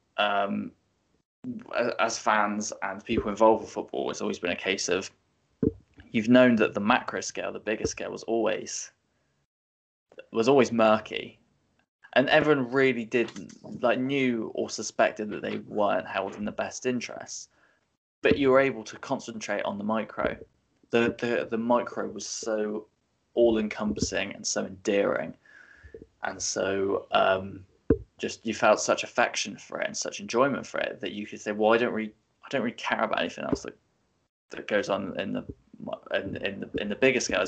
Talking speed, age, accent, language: 170 wpm, 20-39, British, English